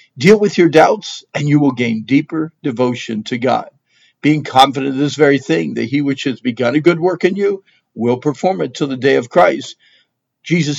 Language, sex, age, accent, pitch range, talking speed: English, male, 50-69, American, 130-165 Hz, 205 wpm